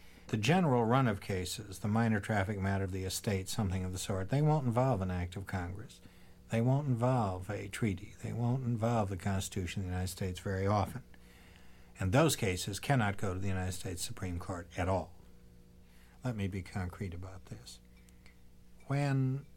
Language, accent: English, American